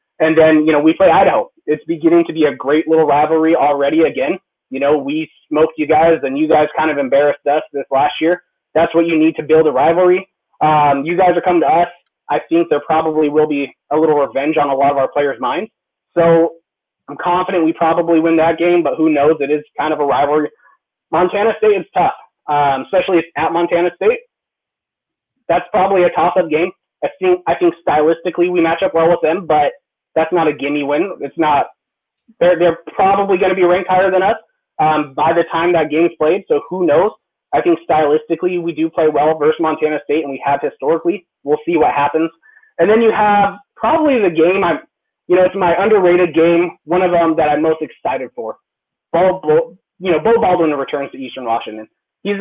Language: English